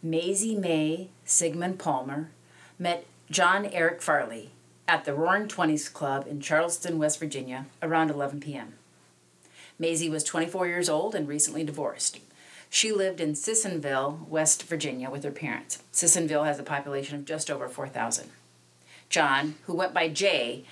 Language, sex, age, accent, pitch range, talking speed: English, female, 40-59, American, 135-165 Hz, 145 wpm